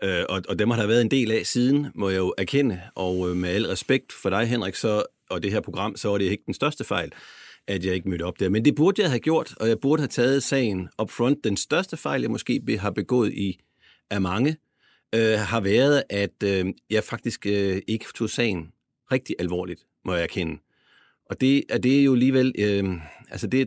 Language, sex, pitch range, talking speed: Danish, male, 95-125 Hz, 225 wpm